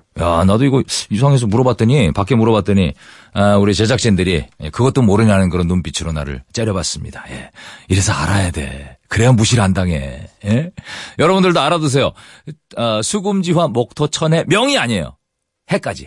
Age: 40-59